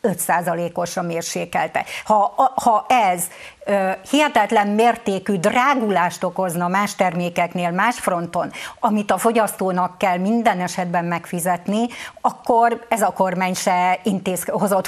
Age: 50-69